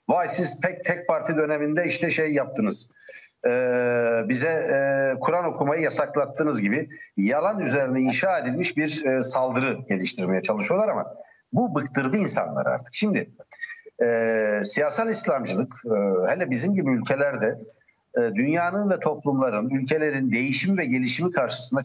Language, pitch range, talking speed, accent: Turkish, 130-185 Hz, 130 wpm, native